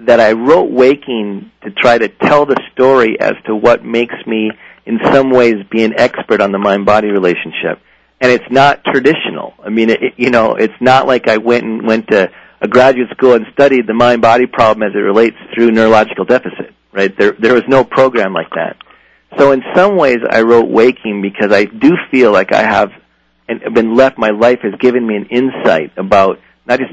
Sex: male